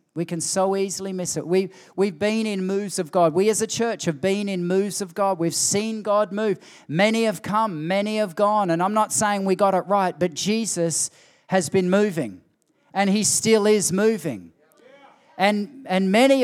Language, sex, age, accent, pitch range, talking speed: English, male, 40-59, Australian, 185-225 Hz, 195 wpm